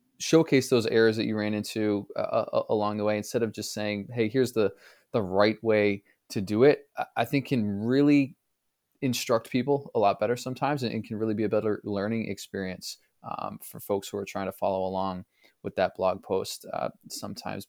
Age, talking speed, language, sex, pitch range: 20-39, 195 wpm, English, male, 105-125 Hz